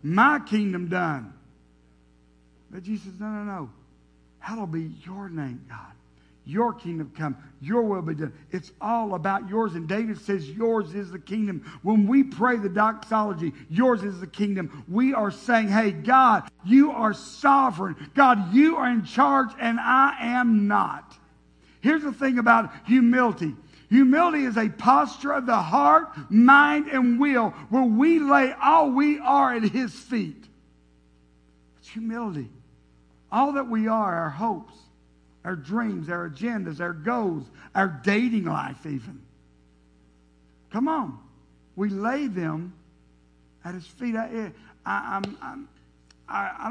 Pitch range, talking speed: 145-230 Hz, 140 wpm